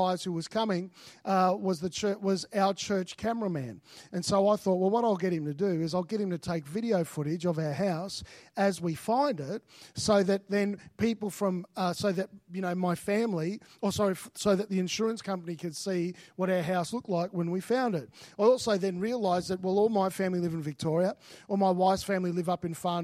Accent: Australian